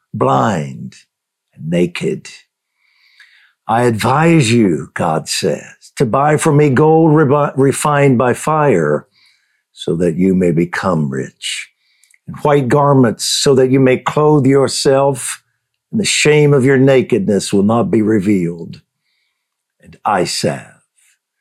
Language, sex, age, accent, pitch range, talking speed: English, male, 60-79, American, 115-155 Hz, 125 wpm